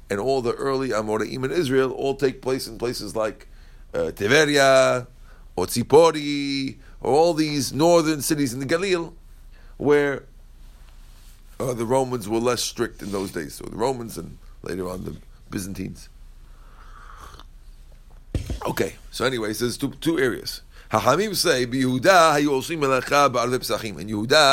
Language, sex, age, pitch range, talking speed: English, male, 50-69, 110-150 Hz, 125 wpm